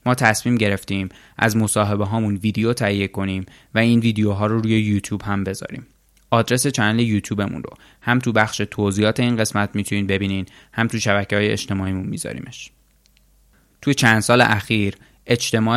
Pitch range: 100-115 Hz